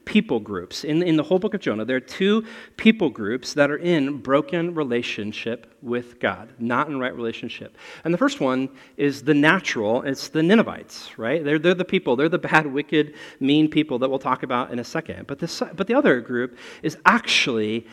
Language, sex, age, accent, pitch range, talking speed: English, male, 40-59, American, 125-175 Hz, 205 wpm